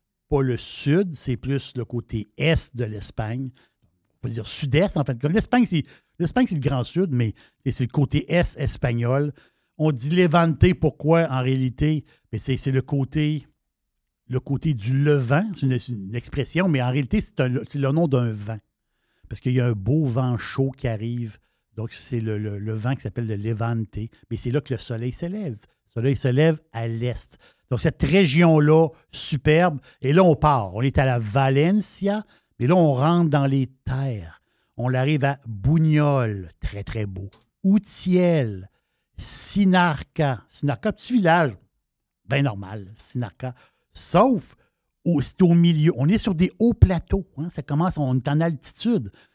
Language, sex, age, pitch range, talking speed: French, male, 60-79, 120-160 Hz, 180 wpm